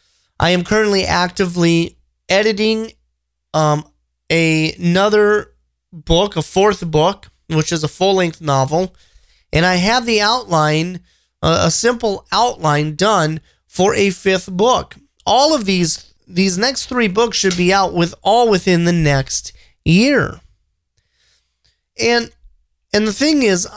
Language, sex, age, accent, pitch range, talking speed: English, male, 30-49, American, 150-200 Hz, 130 wpm